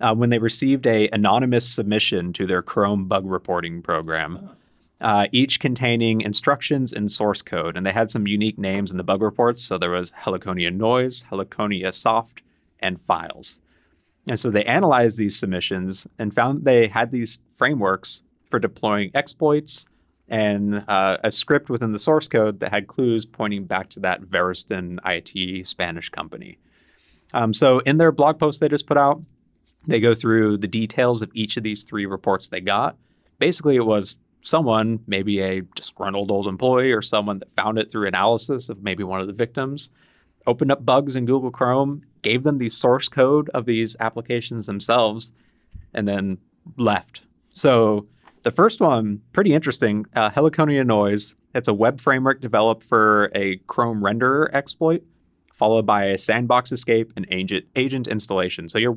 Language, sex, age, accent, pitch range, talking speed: English, male, 30-49, American, 100-130 Hz, 170 wpm